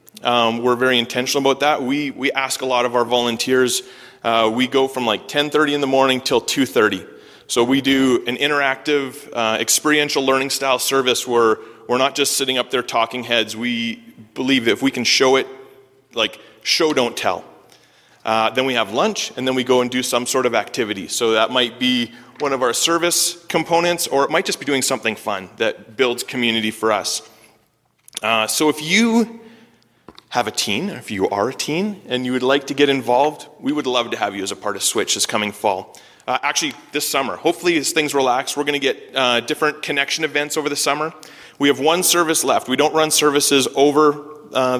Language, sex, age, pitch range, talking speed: English, male, 30-49, 120-145 Hz, 210 wpm